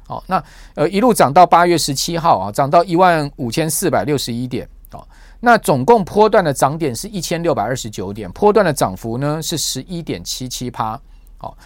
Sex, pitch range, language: male, 130-180 Hz, Chinese